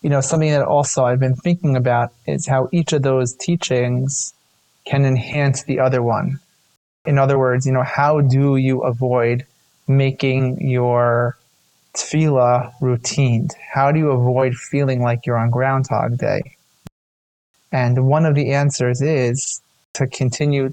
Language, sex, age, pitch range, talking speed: English, male, 20-39, 125-140 Hz, 150 wpm